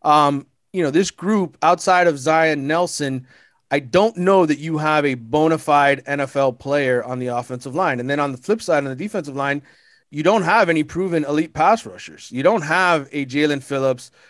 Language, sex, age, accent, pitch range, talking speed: English, male, 30-49, American, 125-150 Hz, 200 wpm